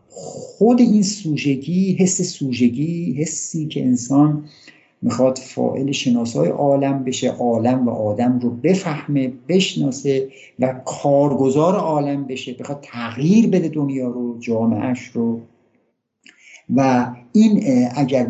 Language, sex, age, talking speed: Persian, male, 50-69, 110 wpm